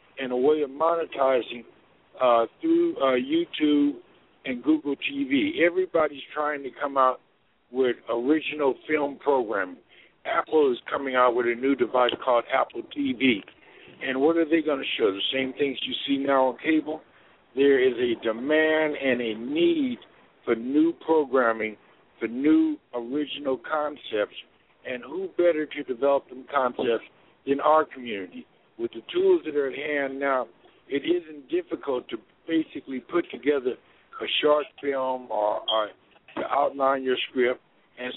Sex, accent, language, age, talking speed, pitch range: male, American, English, 60-79, 150 wpm, 125-165 Hz